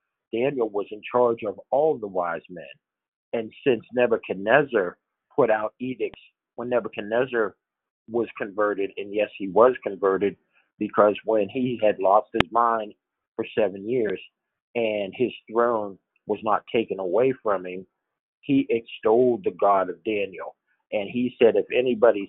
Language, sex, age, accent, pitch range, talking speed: English, male, 50-69, American, 100-125 Hz, 145 wpm